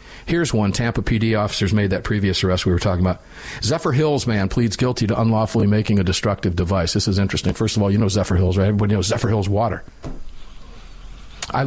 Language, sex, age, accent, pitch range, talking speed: English, male, 50-69, American, 95-120 Hz, 210 wpm